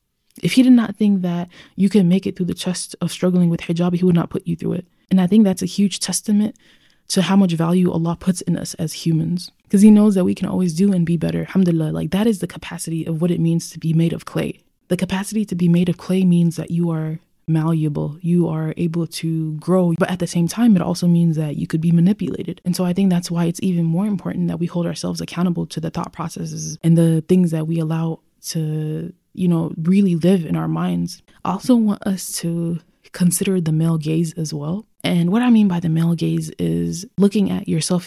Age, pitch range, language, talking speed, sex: 20-39, 165-195 Hz, English, 240 wpm, female